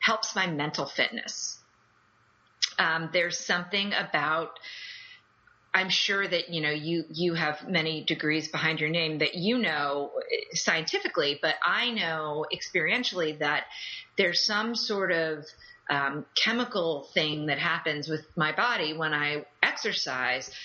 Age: 30-49